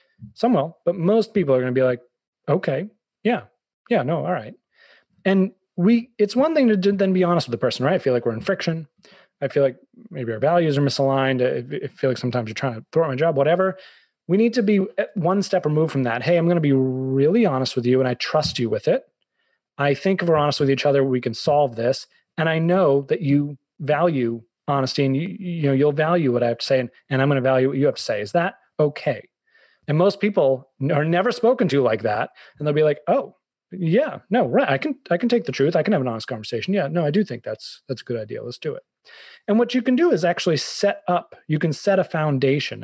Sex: male